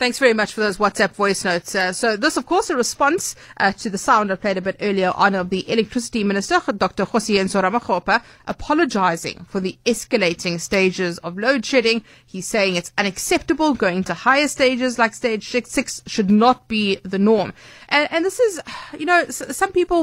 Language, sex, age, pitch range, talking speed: English, female, 30-49, 190-255 Hz, 190 wpm